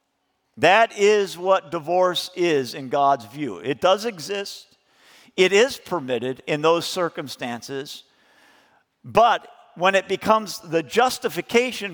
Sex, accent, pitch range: male, American, 155-200 Hz